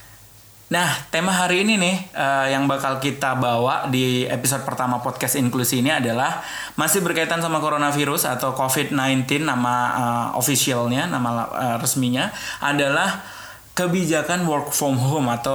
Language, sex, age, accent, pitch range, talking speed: Indonesian, male, 20-39, native, 125-150 Hz, 135 wpm